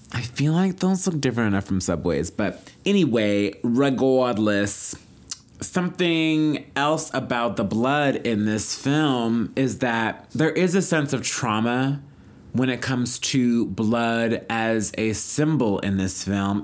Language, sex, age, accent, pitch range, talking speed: English, male, 30-49, American, 115-155 Hz, 140 wpm